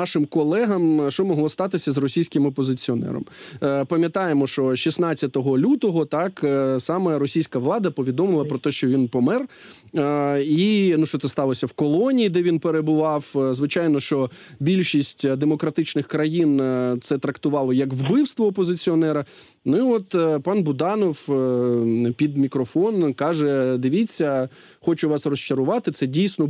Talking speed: 125 wpm